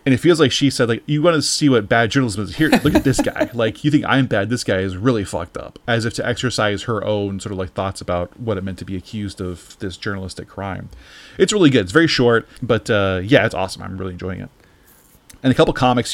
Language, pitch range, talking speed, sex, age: English, 105-135 Hz, 265 wpm, male, 30-49